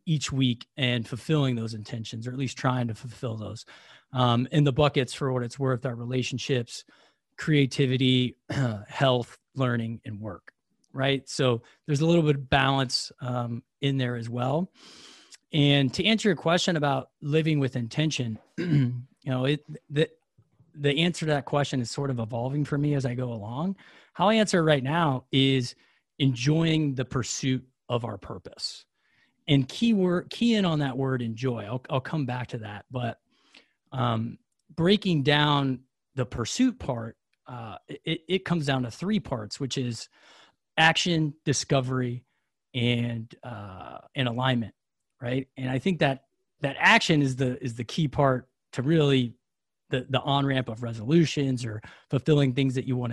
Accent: American